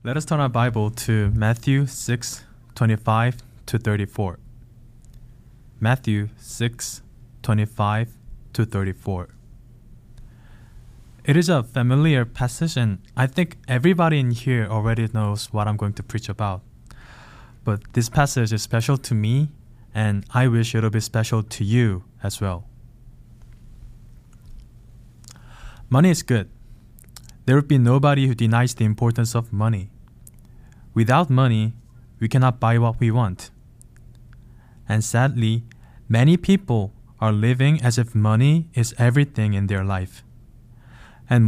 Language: English